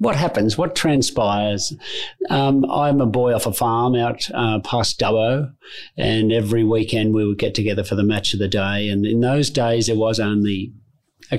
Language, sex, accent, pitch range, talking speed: English, male, Australian, 110-130 Hz, 190 wpm